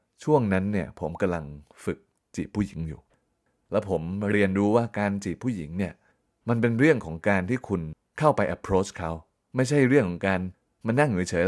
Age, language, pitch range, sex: 20-39, Thai, 90-110 Hz, male